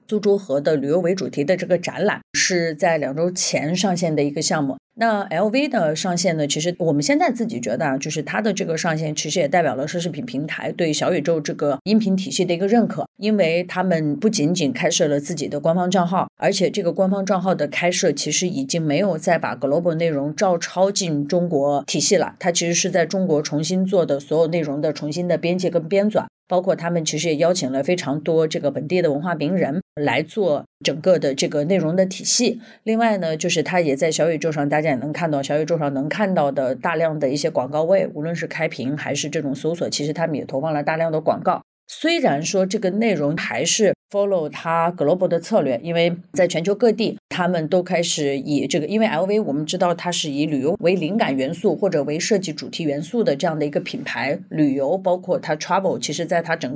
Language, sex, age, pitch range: Chinese, female, 30-49, 150-185 Hz